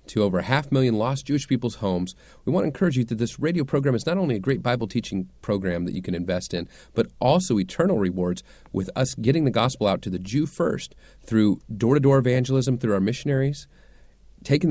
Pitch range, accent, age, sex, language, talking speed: 100-140 Hz, American, 40-59, male, English, 210 wpm